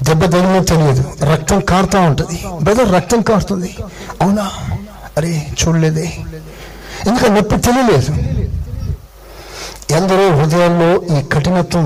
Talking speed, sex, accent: 90 wpm, male, native